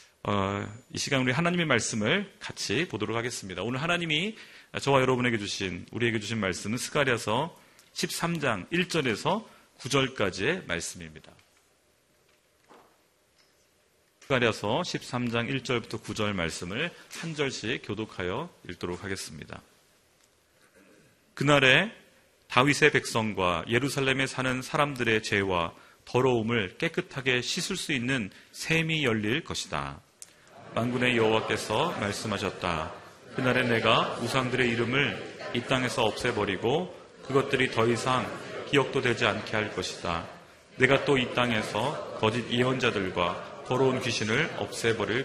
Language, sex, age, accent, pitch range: Korean, male, 40-59, native, 110-140 Hz